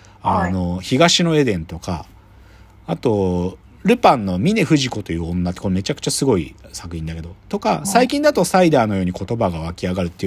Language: Japanese